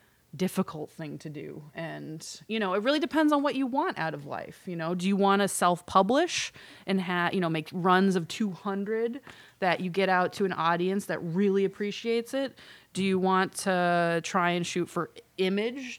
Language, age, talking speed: English, 20-39, 195 wpm